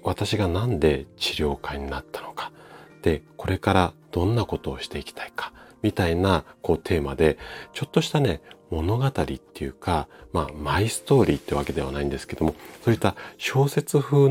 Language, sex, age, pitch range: Japanese, male, 40-59, 80-115 Hz